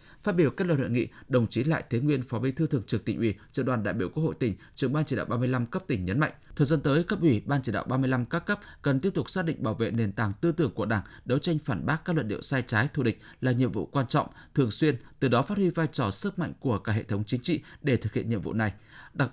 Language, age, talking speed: Vietnamese, 20-39, 300 wpm